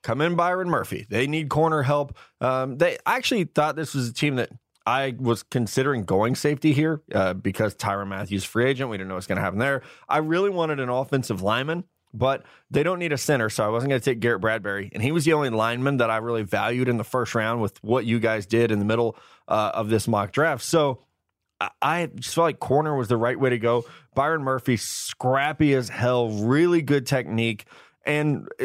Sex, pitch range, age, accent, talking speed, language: male, 115-150 Hz, 20-39, American, 220 wpm, English